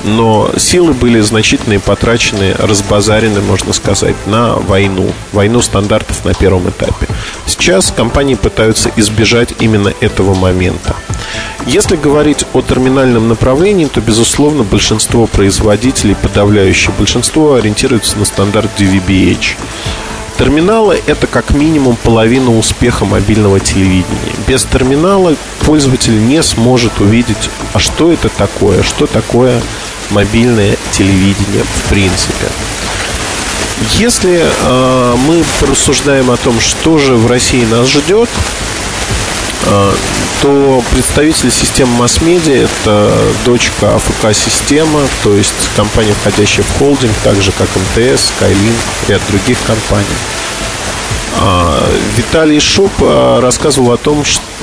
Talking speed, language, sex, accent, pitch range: 110 wpm, Russian, male, native, 100-125 Hz